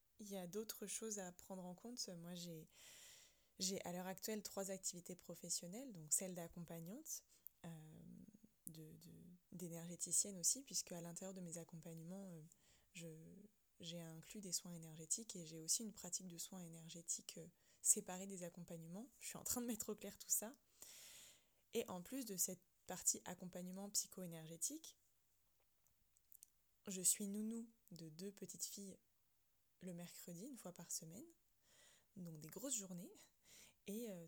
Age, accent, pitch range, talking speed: 20-39, French, 175-210 Hz, 145 wpm